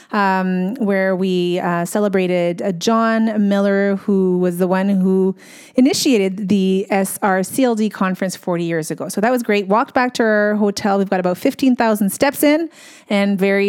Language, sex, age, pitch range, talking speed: English, female, 30-49, 190-250 Hz, 160 wpm